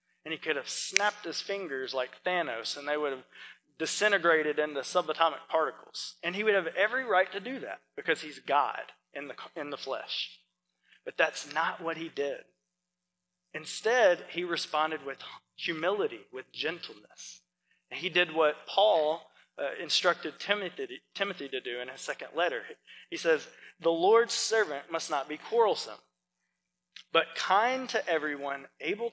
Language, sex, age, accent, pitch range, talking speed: English, male, 20-39, American, 140-200 Hz, 155 wpm